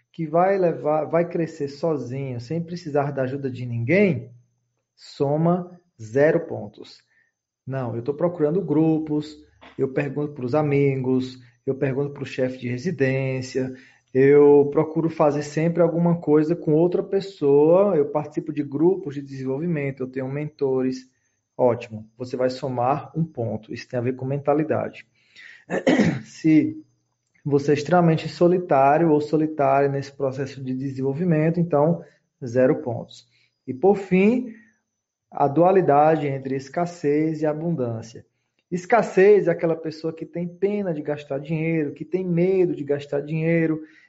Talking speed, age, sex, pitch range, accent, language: 135 wpm, 20-39, male, 135-170 Hz, Brazilian, Portuguese